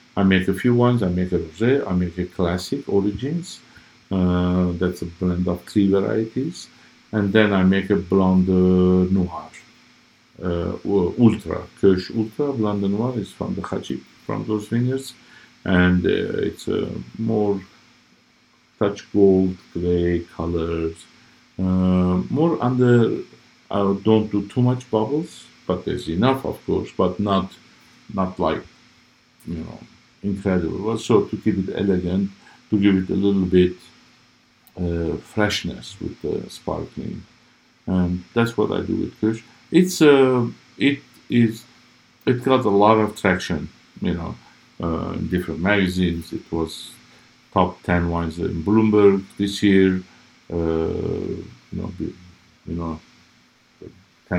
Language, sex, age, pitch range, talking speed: English, male, 50-69, 90-110 Hz, 140 wpm